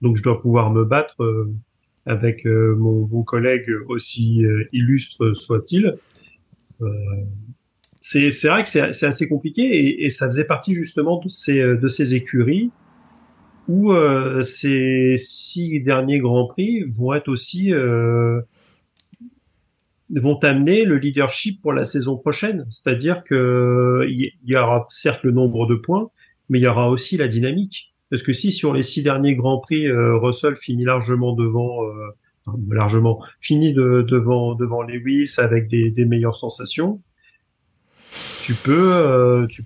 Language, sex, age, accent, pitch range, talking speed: French, male, 40-59, French, 115-145 Hz, 150 wpm